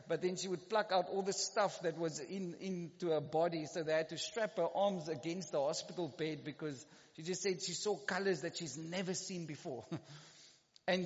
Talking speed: 210 wpm